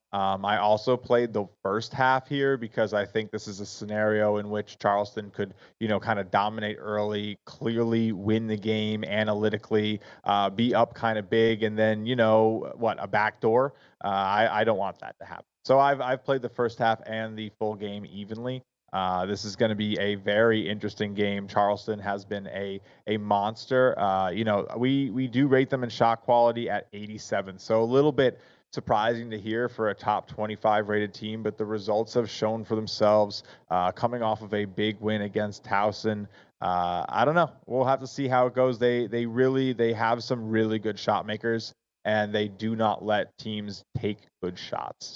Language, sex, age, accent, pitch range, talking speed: English, male, 20-39, American, 105-115 Hz, 200 wpm